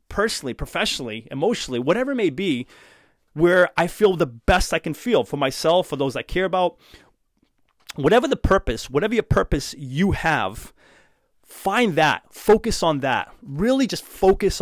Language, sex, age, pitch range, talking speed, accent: English, male, 30-49, 135-180 Hz, 155 wpm, American